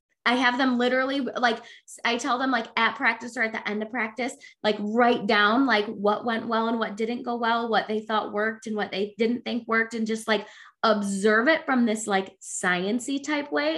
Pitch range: 210-265 Hz